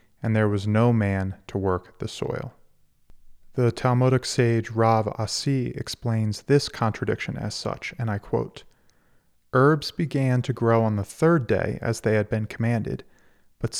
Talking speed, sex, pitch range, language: 155 wpm, male, 110-130 Hz, English